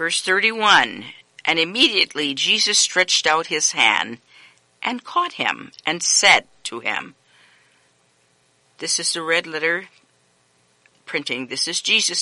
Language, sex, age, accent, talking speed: English, female, 50-69, American, 125 wpm